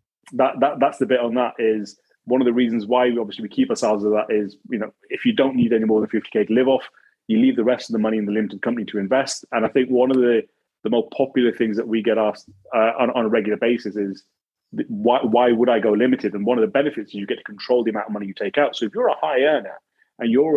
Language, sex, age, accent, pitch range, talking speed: English, male, 30-49, British, 110-125 Hz, 290 wpm